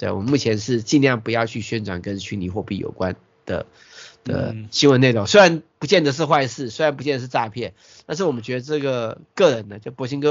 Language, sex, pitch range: Chinese, male, 105-130 Hz